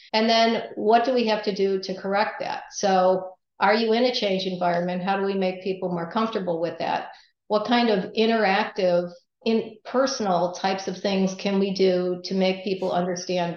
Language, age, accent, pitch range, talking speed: English, 50-69, American, 180-215 Hz, 190 wpm